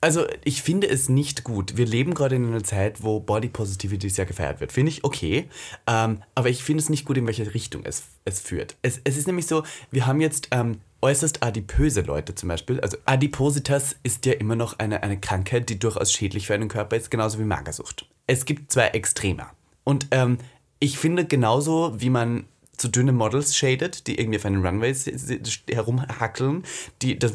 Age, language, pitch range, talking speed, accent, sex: 30-49, German, 105-135 Hz, 195 wpm, German, male